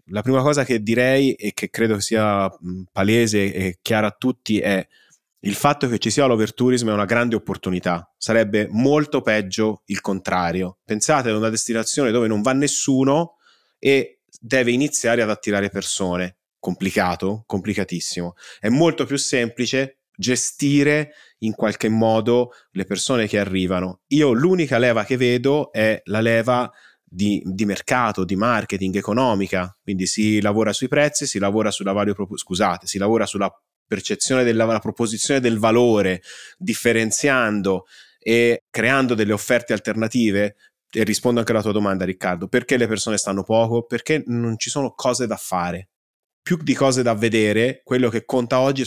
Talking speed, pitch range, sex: 150 wpm, 100-130 Hz, male